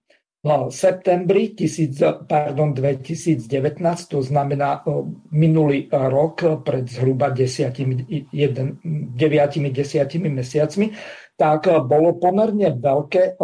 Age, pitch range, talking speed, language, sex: 50-69, 145-165 Hz, 65 wpm, Slovak, male